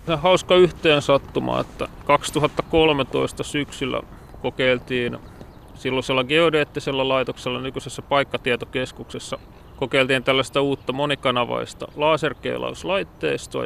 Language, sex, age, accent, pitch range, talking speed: Finnish, male, 30-49, native, 120-145 Hz, 75 wpm